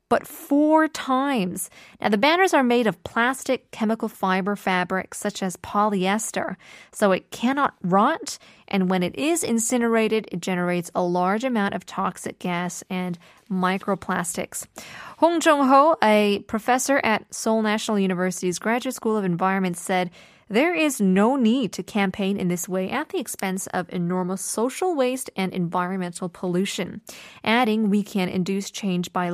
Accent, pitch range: American, 185-240 Hz